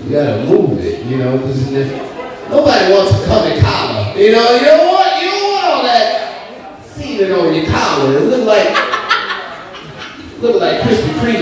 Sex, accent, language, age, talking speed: male, American, English, 30-49, 175 wpm